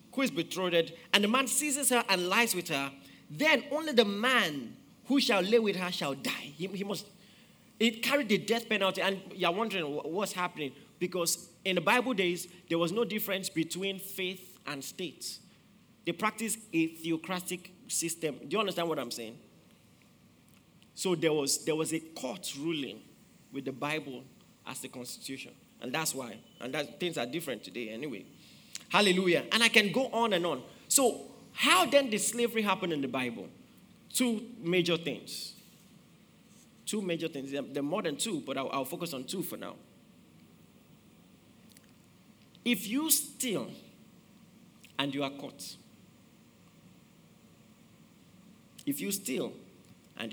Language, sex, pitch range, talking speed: English, male, 160-220 Hz, 155 wpm